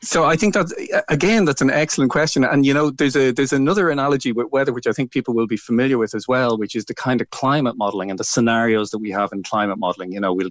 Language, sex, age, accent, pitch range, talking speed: English, male, 30-49, Irish, 105-130 Hz, 275 wpm